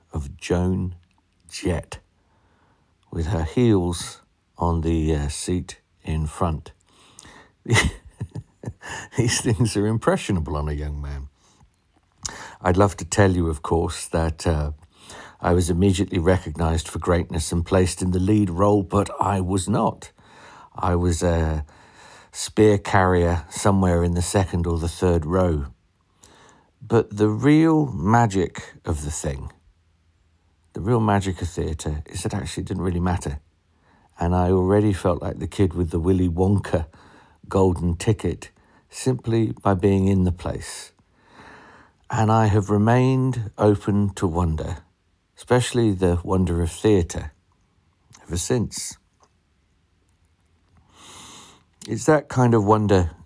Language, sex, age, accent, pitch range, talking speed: English, male, 50-69, British, 85-100 Hz, 130 wpm